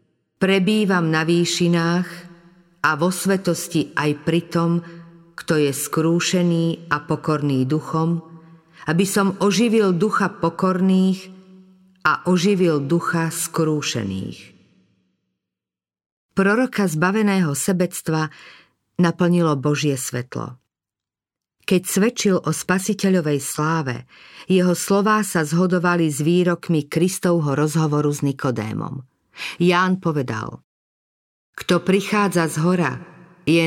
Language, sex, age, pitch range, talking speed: Slovak, female, 50-69, 150-180 Hz, 90 wpm